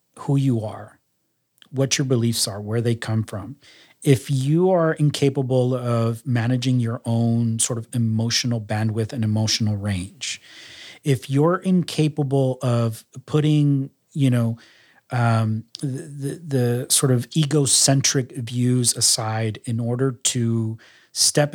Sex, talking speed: male, 130 wpm